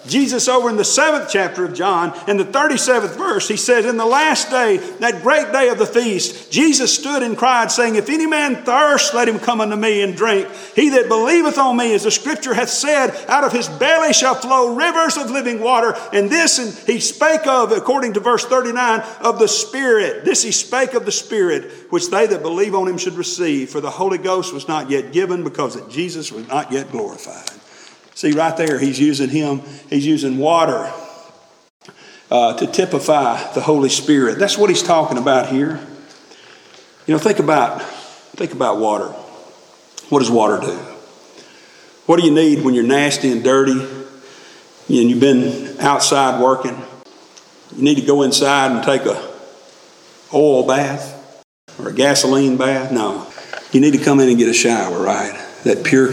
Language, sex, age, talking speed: English, male, 50-69, 185 wpm